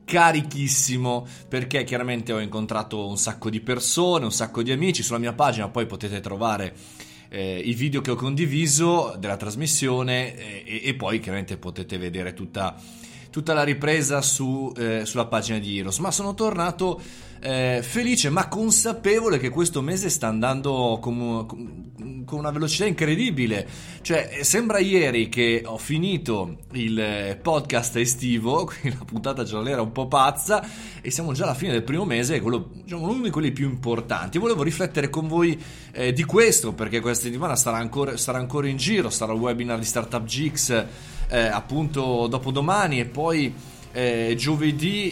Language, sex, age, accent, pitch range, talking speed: Italian, male, 20-39, native, 115-155 Hz, 160 wpm